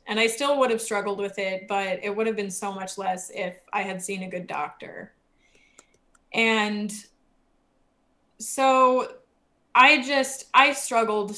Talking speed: 155 wpm